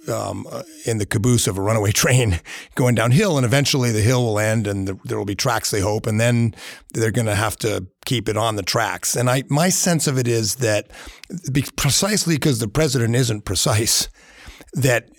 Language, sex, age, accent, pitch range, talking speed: English, male, 50-69, American, 100-130 Hz, 200 wpm